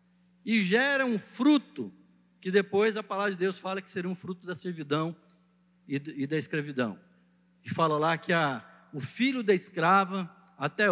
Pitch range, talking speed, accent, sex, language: 175-220 Hz, 165 wpm, Brazilian, male, Portuguese